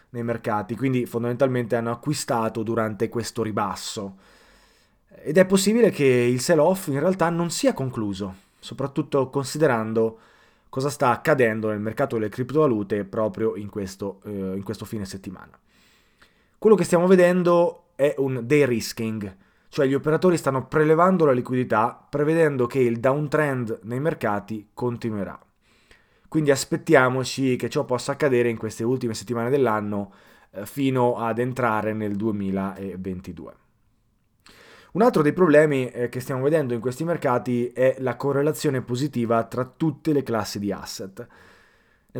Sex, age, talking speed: male, 20-39, 135 wpm